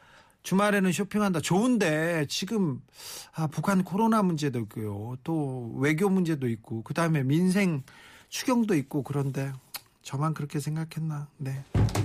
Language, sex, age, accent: Korean, male, 40-59, native